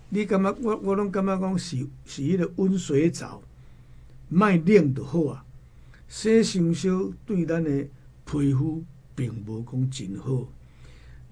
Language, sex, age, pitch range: Chinese, male, 60-79, 130-175 Hz